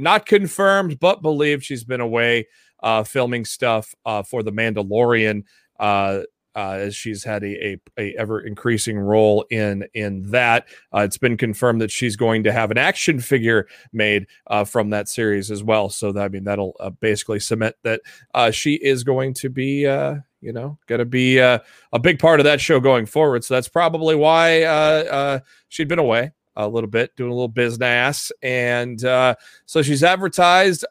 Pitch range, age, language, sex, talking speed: 110-140 Hz, 30-49, English, male, 185 wpm